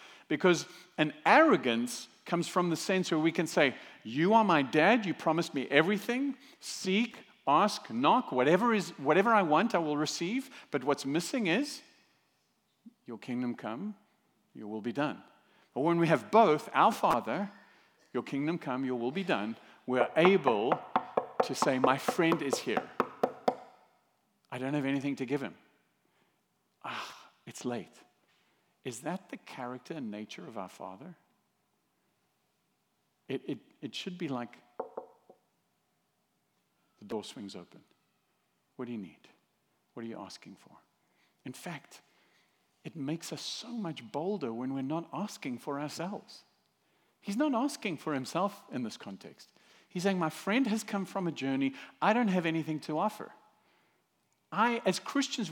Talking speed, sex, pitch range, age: 150 wpm, male, 145-215 Hz, 50-69